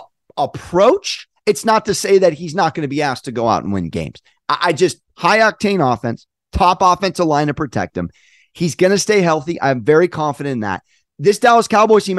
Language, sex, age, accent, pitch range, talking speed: English, male, 30-49, American, 145-220 Hz, 210 wpm